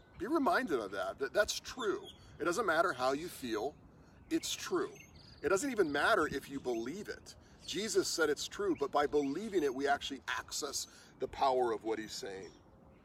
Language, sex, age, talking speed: English, male, 40-59, 180 wpm